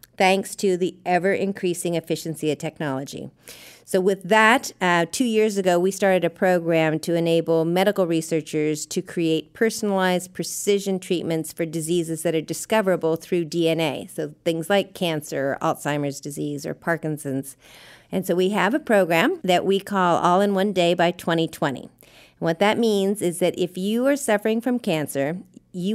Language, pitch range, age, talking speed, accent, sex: English, 165-210 Hz, 50-69, 160 wpm, American, female